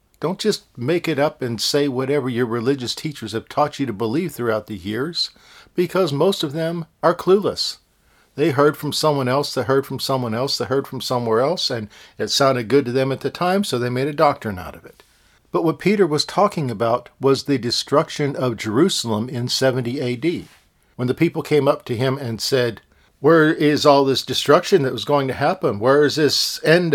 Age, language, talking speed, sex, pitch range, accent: 50-69, English, 210 wpm, male, 120-150 Hz, American